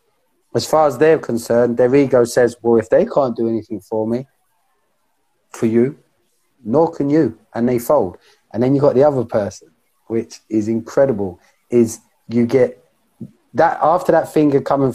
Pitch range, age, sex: 115-150 Hz, 30-49, male